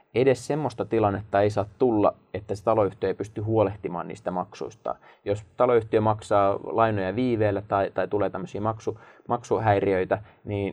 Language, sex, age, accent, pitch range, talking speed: Finnish, male, 20-39, native, 100-115 Hz, 140 wpm